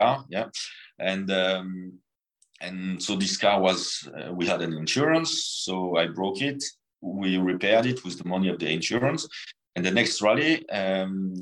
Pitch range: 95-115 Hz